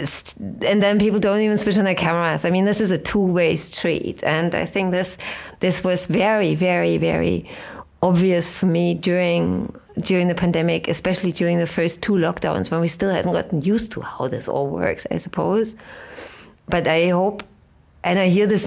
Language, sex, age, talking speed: English, female, 30-49, 185 wpm